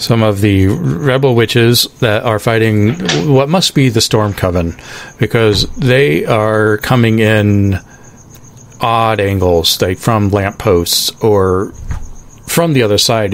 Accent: American